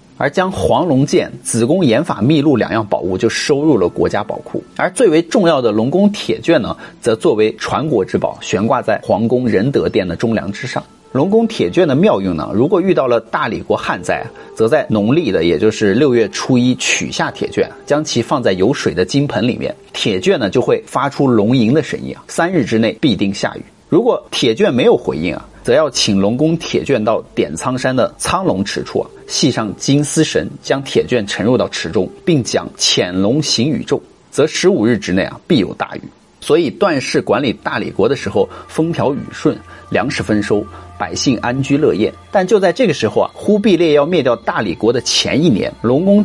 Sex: male